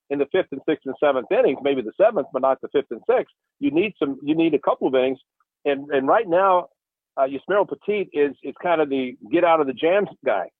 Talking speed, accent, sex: 225 wpm, American, male